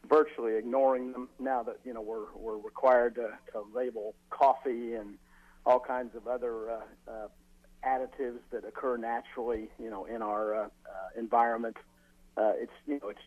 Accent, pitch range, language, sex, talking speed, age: American, 105-130 Hz, English, male, 165 wpm, 50-69